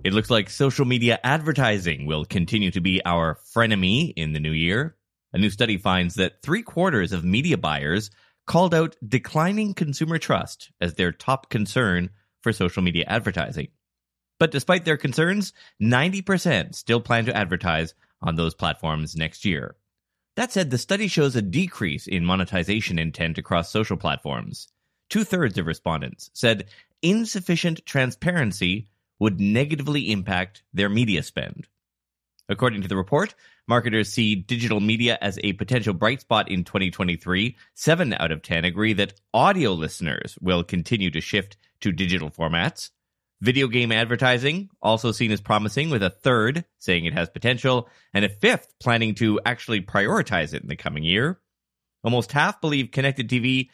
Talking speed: 155 wpm